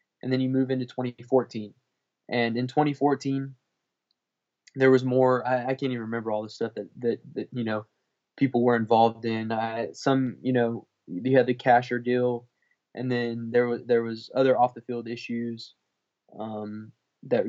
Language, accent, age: English, American, 20-39